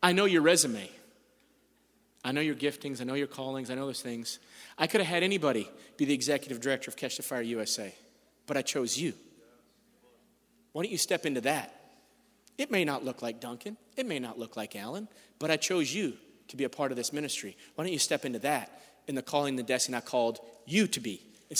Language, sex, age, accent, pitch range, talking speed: English, male, 30-49, American, 140-200 Hz, 225 wpm